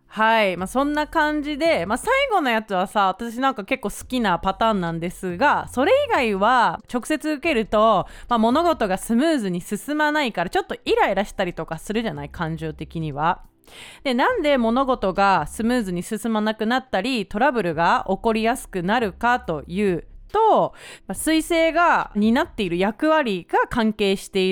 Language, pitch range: Japanese, 190-300 Hz